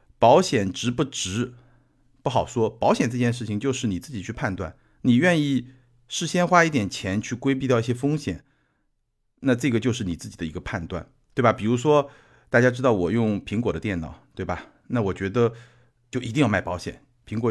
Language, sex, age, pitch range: Chinese, male, 50-69, 100-130 Hz